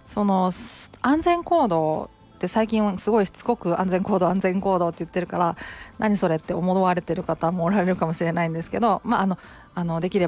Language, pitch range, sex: Japanese, 170-225 Hz, female